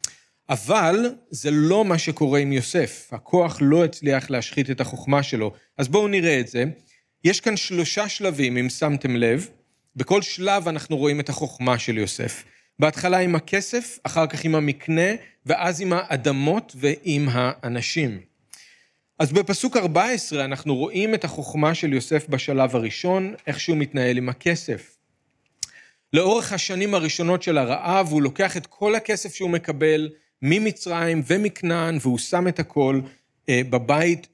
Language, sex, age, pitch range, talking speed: Hebrew, male, 40-59, 130-175 Hz, 140 wpm